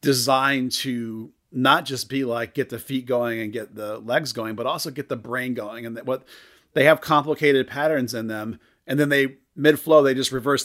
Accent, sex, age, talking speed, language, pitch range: American, male, 40-59, 215 wpm, English, 120-145 Hz